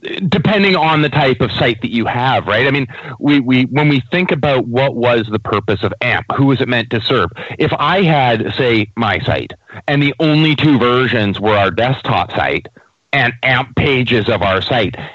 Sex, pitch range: male, 110-140 Hz